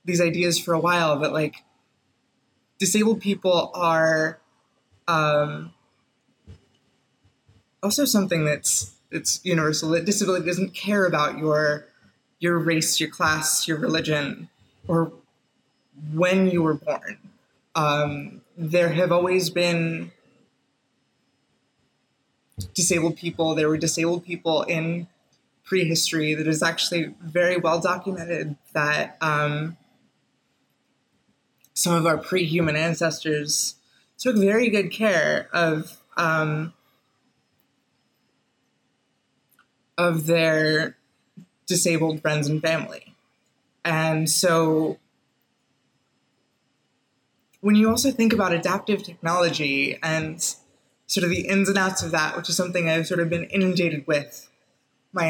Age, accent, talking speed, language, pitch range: 20-39, American, 105 wpm, English, 155-180 Hz